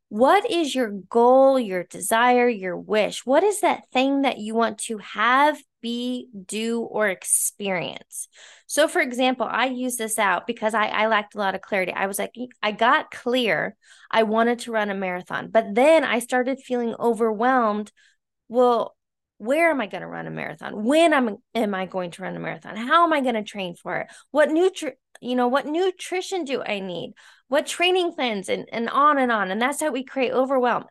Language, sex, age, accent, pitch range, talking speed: English, female, 20-39, American, 215-265 Hz, 200 wpm